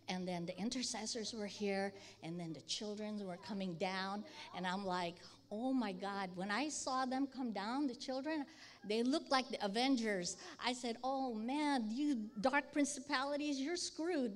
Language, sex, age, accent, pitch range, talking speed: English, female, 60-79, American, 195-275 Hz, 170 wpm